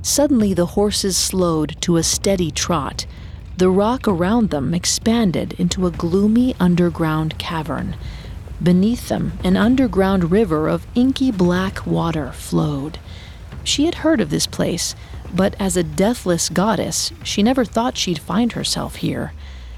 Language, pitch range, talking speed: English, 165-220 Hz, 140 wpm